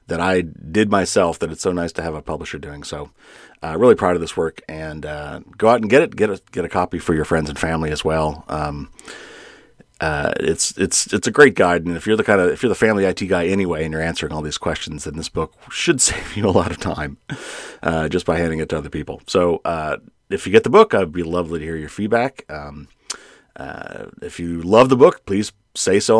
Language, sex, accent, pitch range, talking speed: English, male, American, 80-110 Hz, 245 wpm